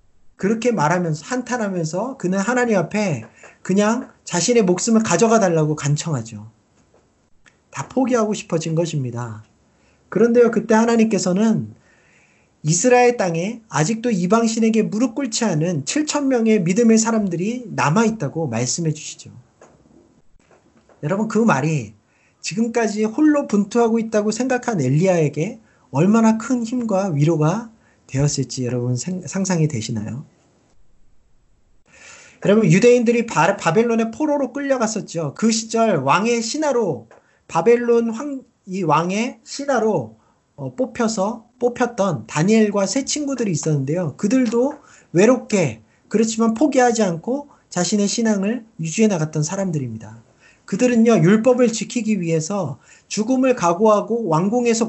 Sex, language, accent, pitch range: male, Korean, native, 160-235 Hz